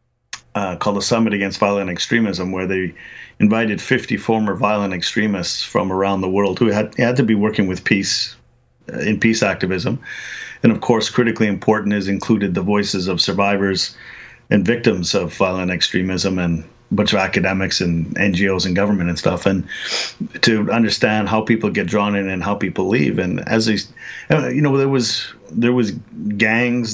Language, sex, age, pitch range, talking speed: English, male, 40-59, 95-110 Hz, 175 wpm